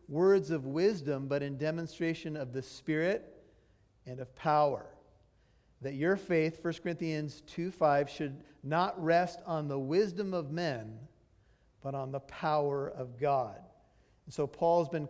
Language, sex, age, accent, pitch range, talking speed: English, male, 50-69, American, 140-170 Hz, 145 wpm